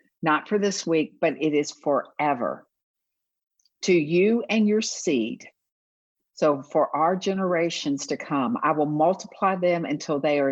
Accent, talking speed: American, 150 wpm